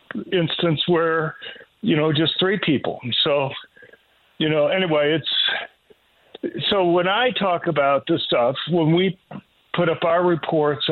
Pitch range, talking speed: 150-175 Hz, 135 wpm